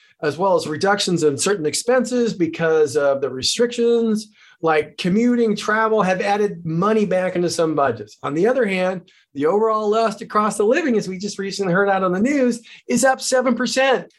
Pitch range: 170-225 Hz